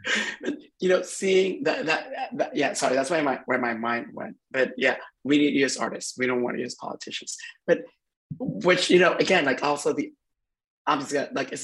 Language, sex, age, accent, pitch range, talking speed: English, male, 30-49, American, 130-155 Hz, 210 wpm